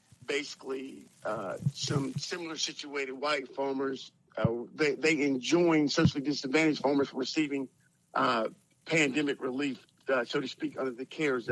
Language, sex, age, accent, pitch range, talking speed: English, male, 50-69, American, 140-165 Hz, 130 wpm